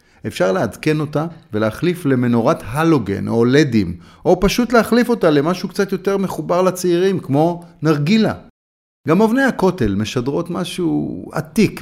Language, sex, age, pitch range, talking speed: Hebrew, male, 30-49, 115-180 Hz, 125 wpm